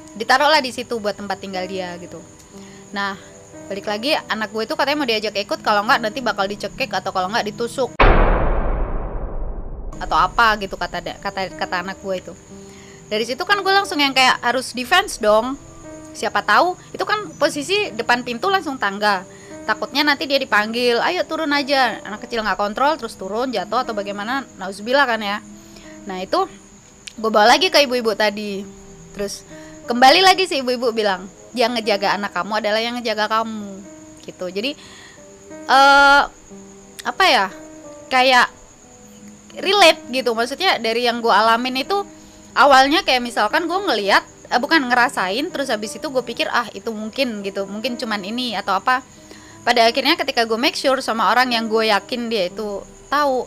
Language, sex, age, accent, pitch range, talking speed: Indonesian, female, 20-39, native, 200-275 Hz, 165 wpm